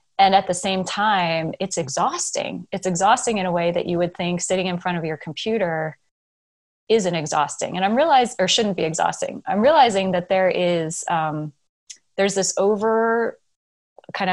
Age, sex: 30-49, female